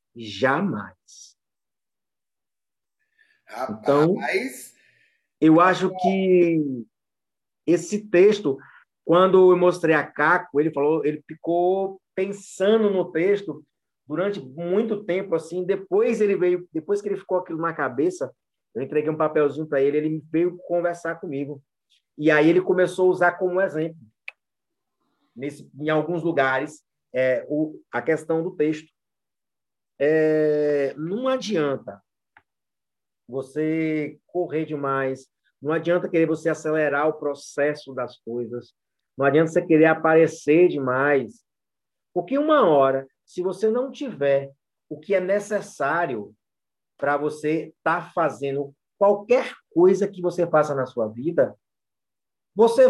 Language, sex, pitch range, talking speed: Portuguese, male, 145-185 Hz, 120 wpm